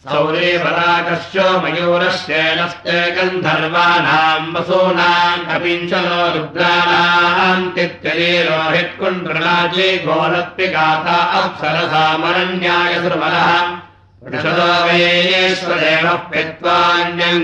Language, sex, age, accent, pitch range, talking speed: Russian, male, 60-79, Indian, 160-175 Hz, 50 wpm